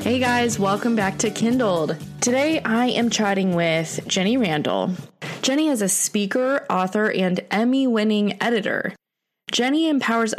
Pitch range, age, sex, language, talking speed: 180-225 Hz, 20-39, female, English, 135 wpm